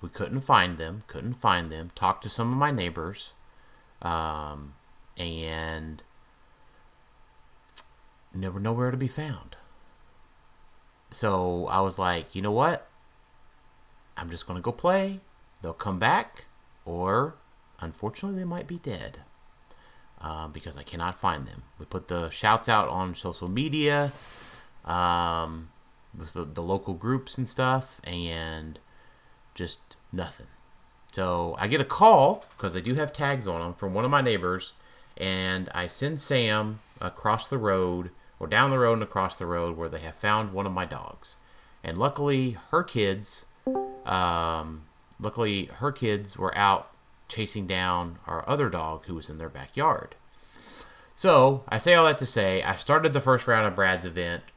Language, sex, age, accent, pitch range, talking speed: English, male, 30-49, American, 85-125 Hz, 155 wpm